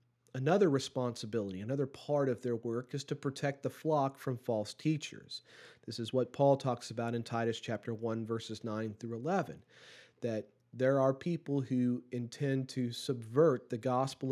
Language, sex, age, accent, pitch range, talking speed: English, male, 40-59, American, 115-135 Hz, 165 wpm